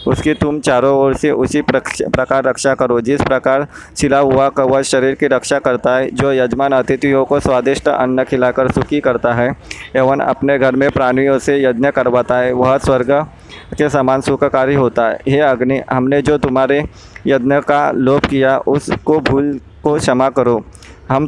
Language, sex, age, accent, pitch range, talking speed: Hindi, male, 20-39, native, 130-140 Hz, 170 wpm